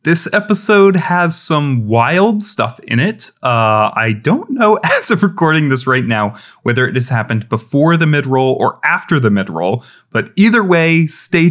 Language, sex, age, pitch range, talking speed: English, male, 30-49, 115-170 Hz, 170 wpm